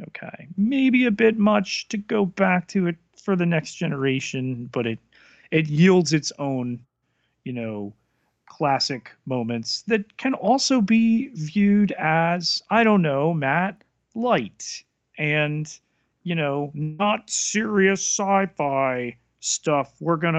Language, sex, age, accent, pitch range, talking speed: English, male, 40-59, American, 135-185 Hz, 130 wpm